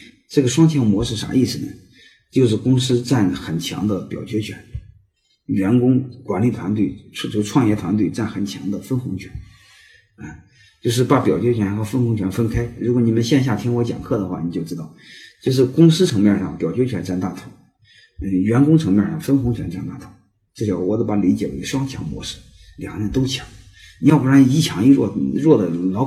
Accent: native